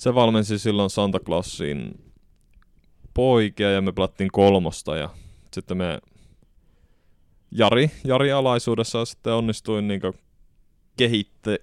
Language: Finnish